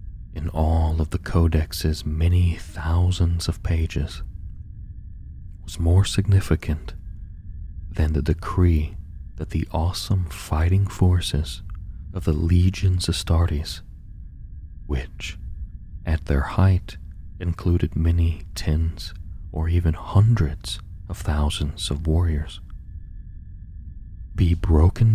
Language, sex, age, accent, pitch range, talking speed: English, male, 40-59, American, 80-90 Hz, 95 wpm